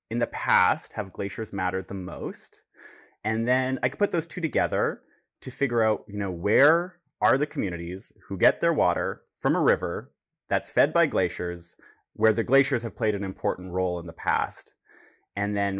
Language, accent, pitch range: English, American, 95-130 Hz